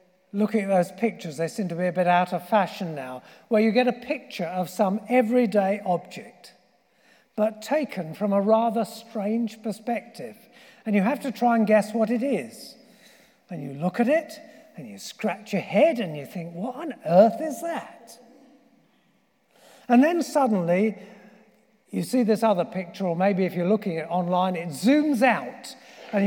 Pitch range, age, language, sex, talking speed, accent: 195-260 Hz, 50-69, English, male, 180 wpm, British